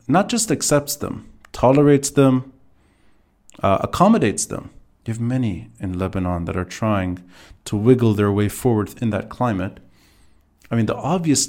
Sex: male